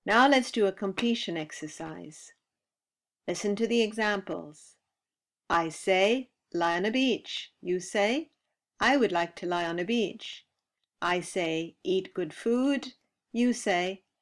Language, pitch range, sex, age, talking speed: English, 175-230 Hz, female, 50-69, 140 wpm